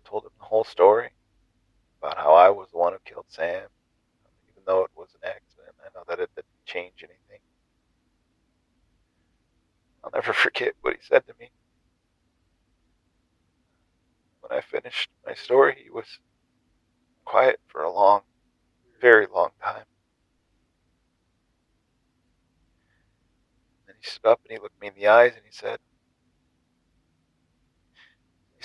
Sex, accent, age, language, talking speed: male, American, 40-59, English, 140 wpm